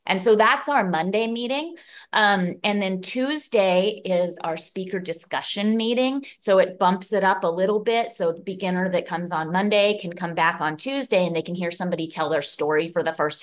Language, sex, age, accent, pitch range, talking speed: English, female, 30-49, American, 165-190 Hz, 205 wpm